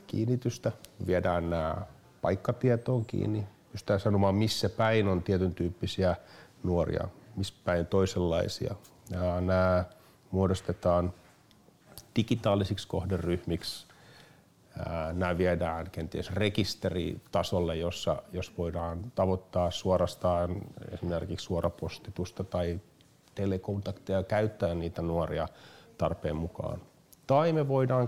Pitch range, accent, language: 90-110 Hz, native, Finnish